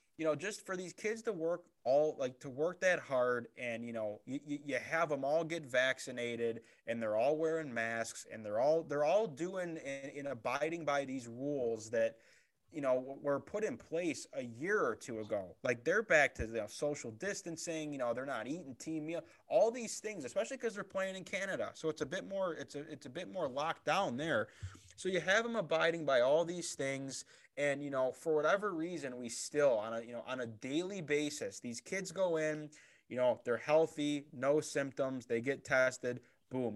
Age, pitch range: 20-39, 130-170 Hz